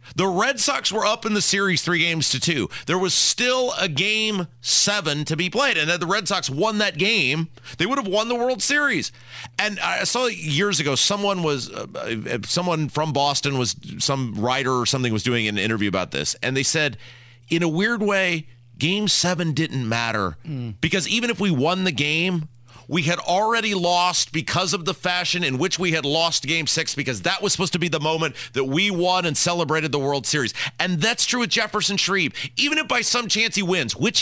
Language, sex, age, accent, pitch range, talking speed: English, male, 30-49, American, 145-205 Hz, 210 wpm